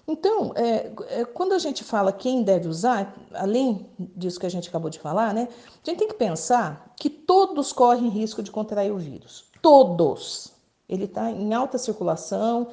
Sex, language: female, Portuguese